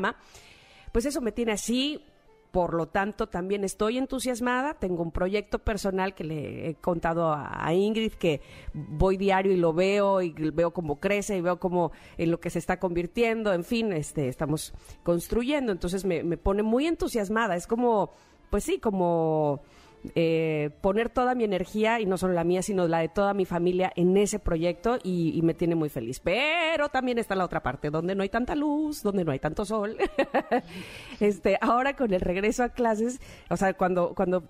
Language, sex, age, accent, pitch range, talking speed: Spanish, female, 40-59, Mexican, 180-230 Hz, 185 wpm